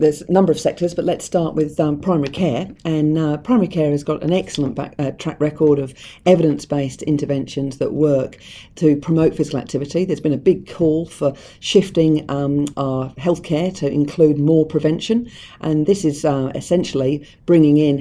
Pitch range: 140-160 Hz